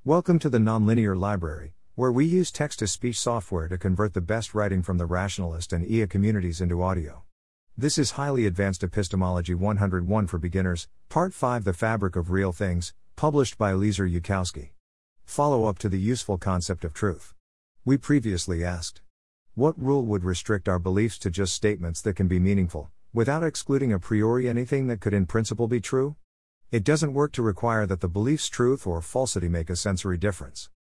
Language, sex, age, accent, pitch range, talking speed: English, male, 50-69, American, 90-115 Hz, 180 wpm